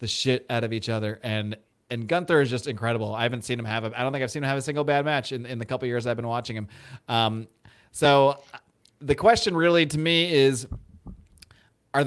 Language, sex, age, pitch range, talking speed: English, male, 30-49, 125-160 Hz, 240 wpm